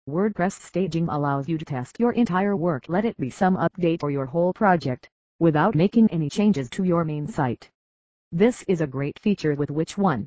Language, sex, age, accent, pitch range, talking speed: English, female, 40-59, American, 140-185 Hz, 200 wpm